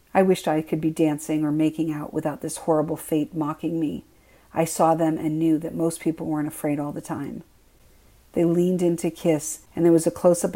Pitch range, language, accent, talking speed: 155-170 Hz, English, American, 215 wpm